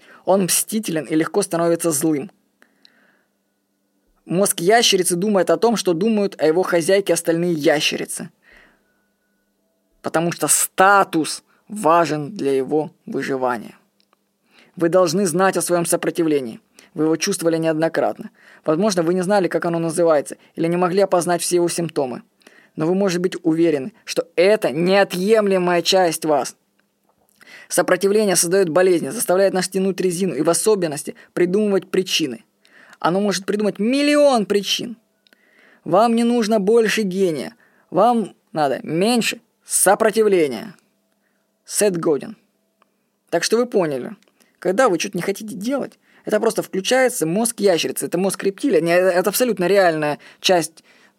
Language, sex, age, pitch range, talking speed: Russian, female, 20-39, 165-205 Hz, 125 wpm